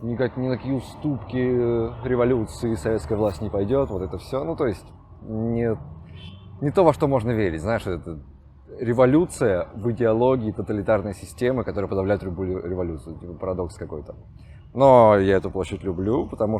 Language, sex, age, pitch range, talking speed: Russian, male, 20-39, 90-115 Hz, 150 wpm